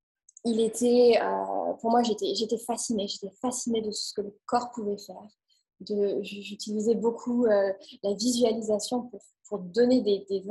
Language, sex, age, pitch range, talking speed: French, female, 20-39, 200-235 Hz, 150 wpm